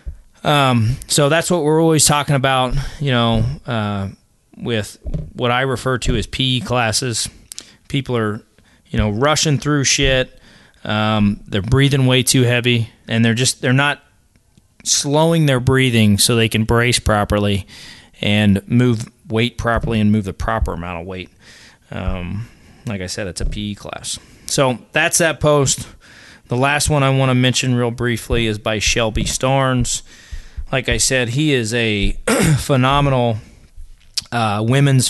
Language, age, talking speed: English, 20-39, 155 wpm